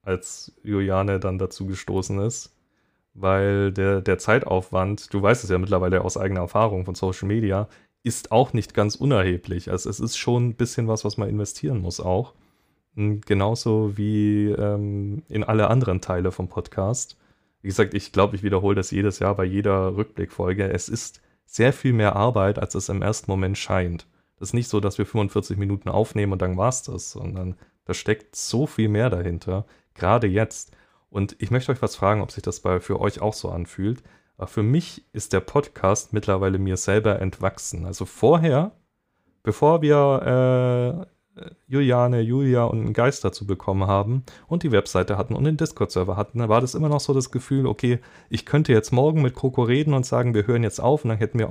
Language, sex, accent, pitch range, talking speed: German, male, German, 95-120 Hz, 195 wpm